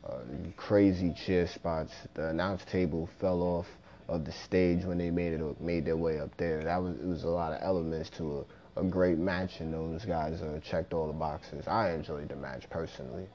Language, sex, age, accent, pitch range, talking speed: English, male, 30-49, American, 80-95 Hz, 210 wpm